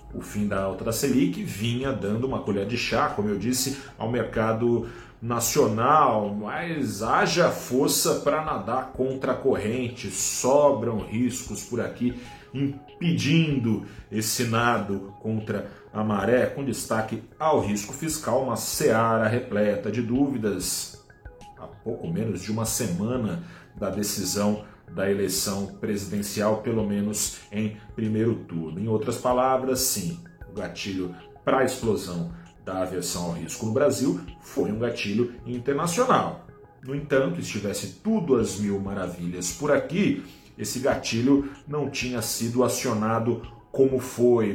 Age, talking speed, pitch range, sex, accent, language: 40-59, 130 wpm, 100-125 Hz, male, Brazilian, Portuguese